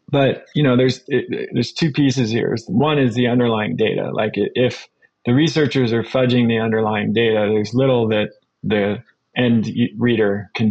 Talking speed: 160 wpm